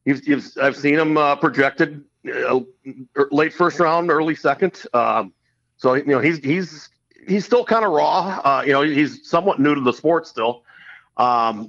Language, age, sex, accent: English, 50-69, male, American